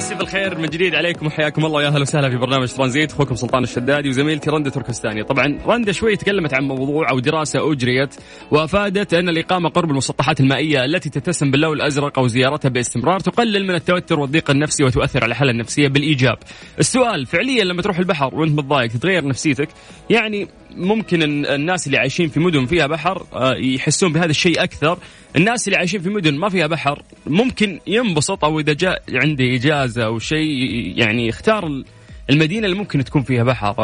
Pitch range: 130-175 Hz